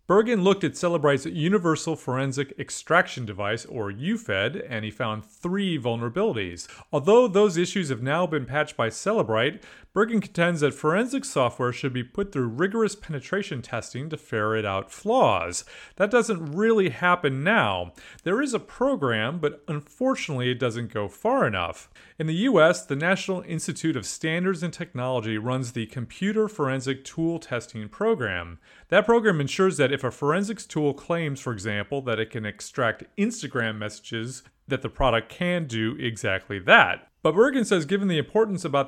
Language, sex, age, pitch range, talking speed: English, male, 30-49, 120-190 Hz, 160 wpm